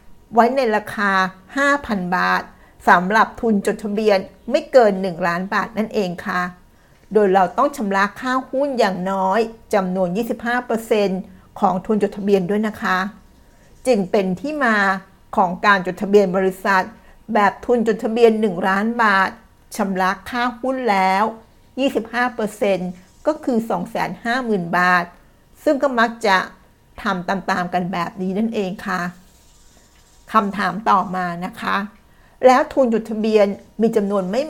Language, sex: Thai, female